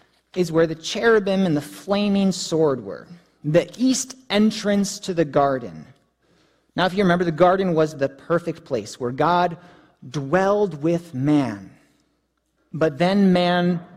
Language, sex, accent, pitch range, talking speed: English, male, American, 155-210 Hz, 140 wpm